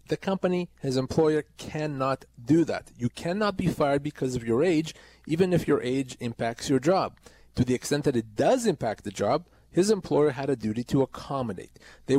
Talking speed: 190 wpm